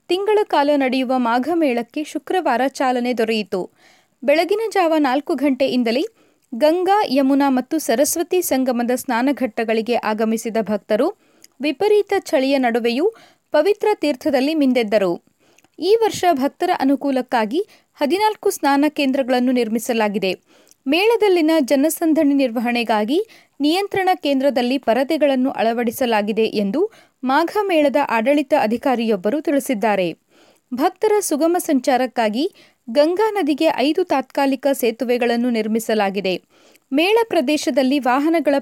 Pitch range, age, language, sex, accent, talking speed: 245-320 Hz, 30-49, Kannada, female, native, 90 wpm